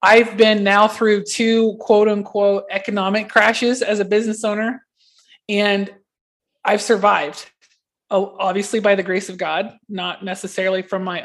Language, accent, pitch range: English, American, 195-230 Hz